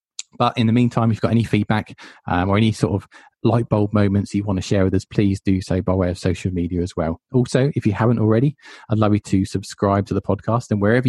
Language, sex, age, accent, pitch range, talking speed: English, male, 20-39, British, 95-110 Hz, 260 wpm